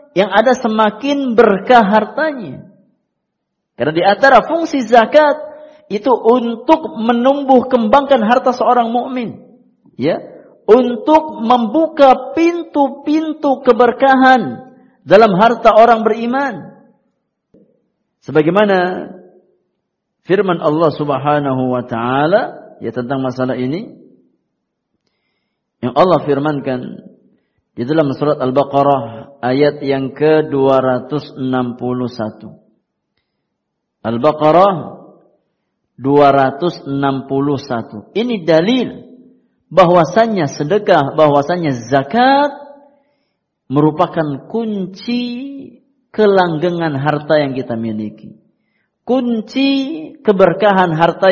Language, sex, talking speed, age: Indonesian, male, 70 wpm, 50-69